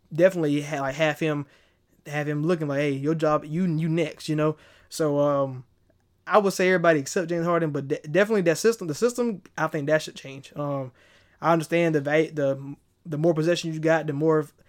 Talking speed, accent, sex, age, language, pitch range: 205 wpm, American, male, 20-39, English, 145-170 Hz